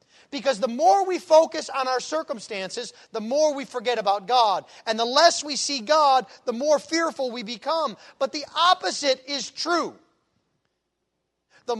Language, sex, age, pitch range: English, male, 40-59, 235-305 Hz